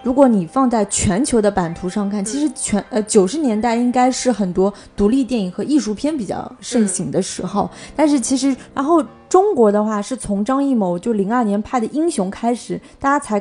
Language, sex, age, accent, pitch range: Chinese, female, 20-39, native, 210-275 Hz